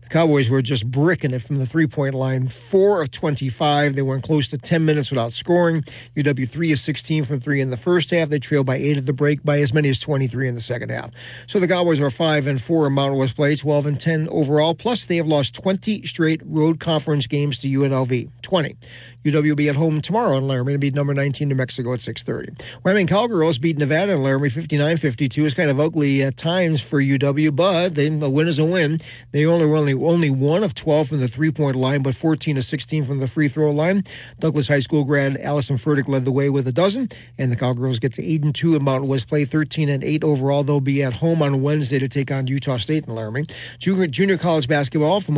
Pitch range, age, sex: 135-160 Hz, 40-59, male